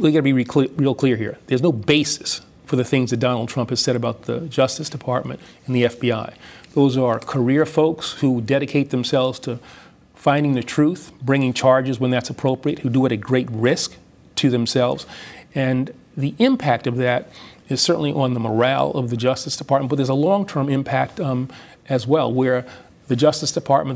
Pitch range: 125-145 Hz